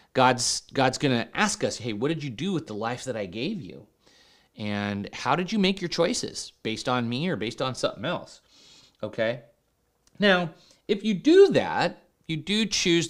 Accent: American